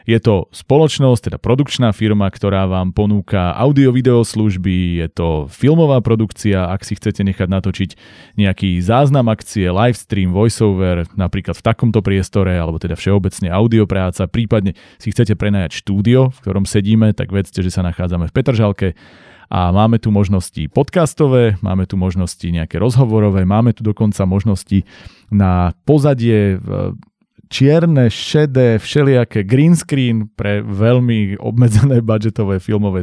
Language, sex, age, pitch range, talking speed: Slovak, male, 30-49, 95-115 Hz, 135 wpm